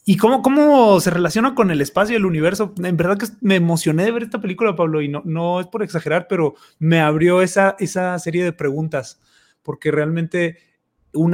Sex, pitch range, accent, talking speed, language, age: male, 155-200 Hz, Mexican, 200 wpm, Spanish, 30-49